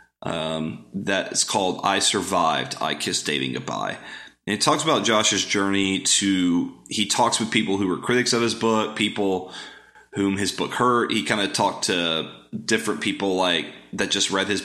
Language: English